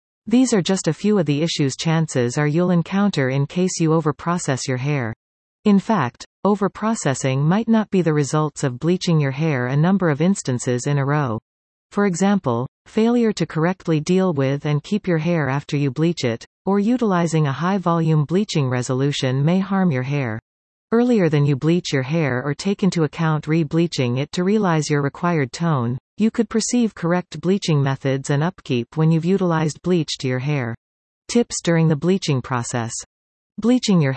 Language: English